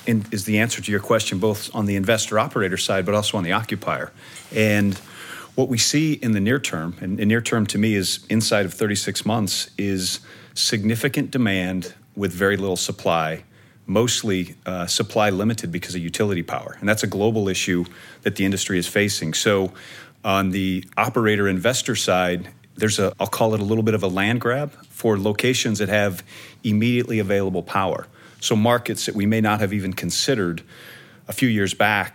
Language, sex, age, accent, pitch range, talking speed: English, male, 40-59, American, 95-115 Hz, 180 wpm